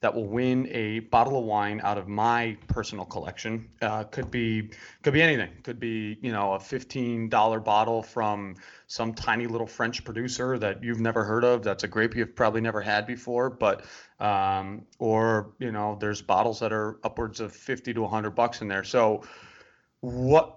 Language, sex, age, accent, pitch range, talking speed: English, male, 30-49, American, 105-120 Hz, 185 wpm